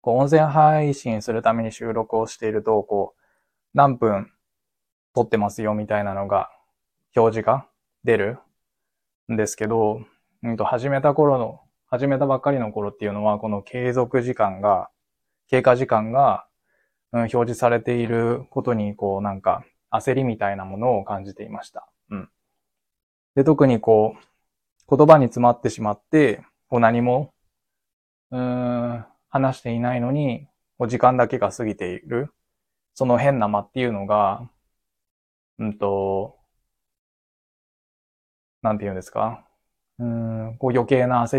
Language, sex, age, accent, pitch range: Japanese, male, 20-39, native, 105-125 Hz